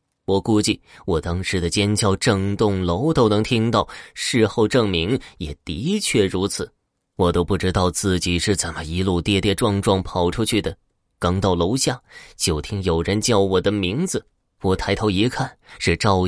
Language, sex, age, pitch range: Chinese, male, 20-39, 90-110 Hz